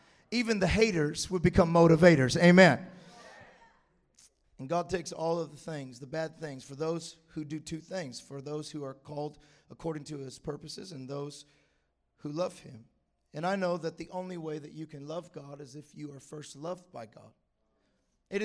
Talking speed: 190 wpm